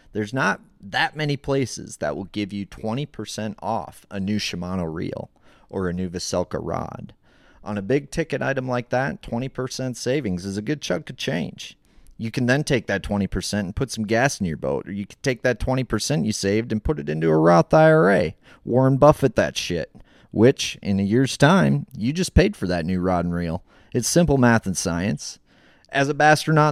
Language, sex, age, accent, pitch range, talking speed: English, male, 30-49, American, 95-140 Hz, 200 wpm